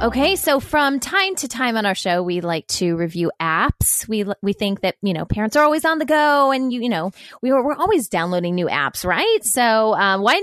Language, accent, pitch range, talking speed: English, American, 190-270 Hz, 230 wpm